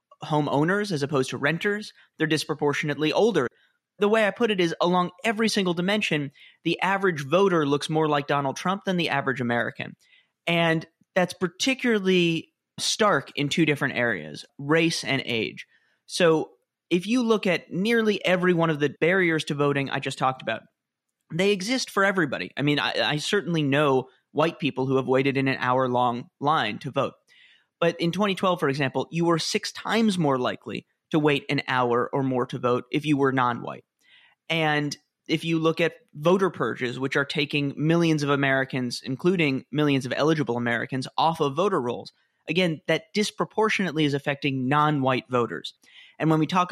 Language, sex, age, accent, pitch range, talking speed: English, male, 30-49, American, 135-175 Hz, 175 wpm